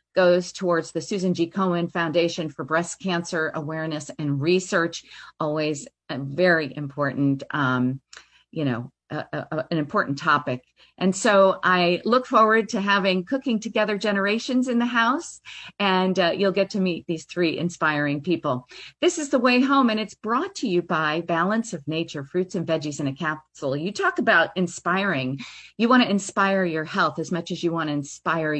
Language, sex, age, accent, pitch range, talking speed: English, female, 50-69, American, 160-210 Hz, 175 wpm